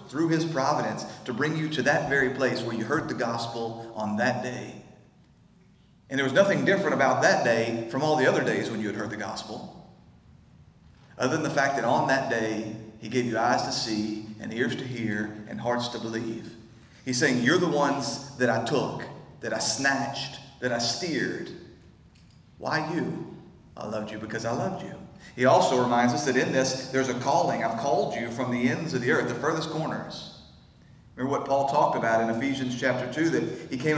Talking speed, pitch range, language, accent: 205 wpm, 115-135 Hz, English, American